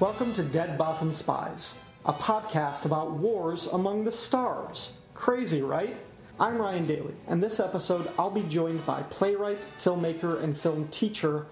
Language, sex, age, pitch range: English, male, 30-49, 155-185 Hz